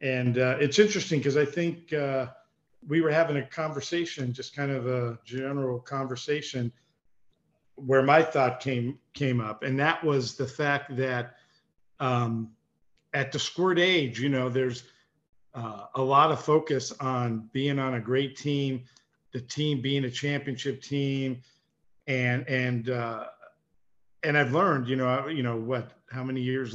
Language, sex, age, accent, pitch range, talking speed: English, male, 50-69, American, 125-140 Hz, 155 wpm